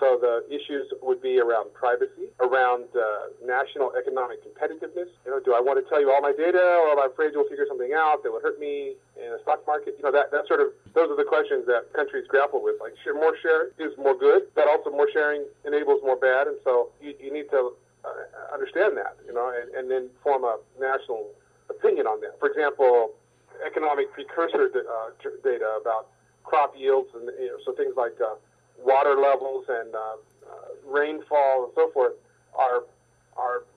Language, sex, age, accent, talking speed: English, male, 40-59, American, 205 wpm